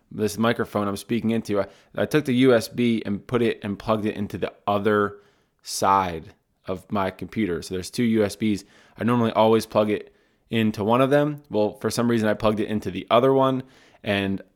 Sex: male